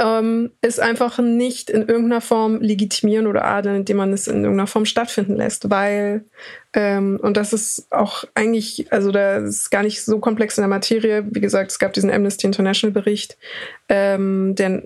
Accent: German